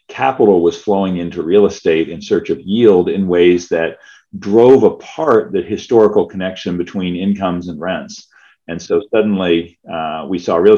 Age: 40-59